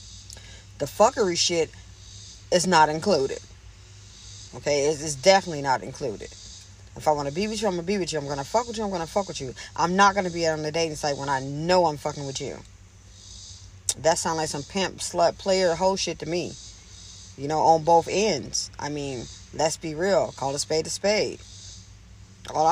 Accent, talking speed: American, 205 wpm